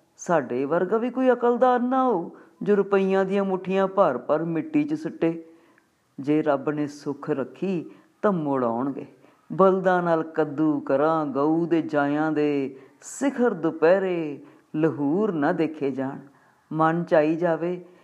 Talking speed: 130 wpm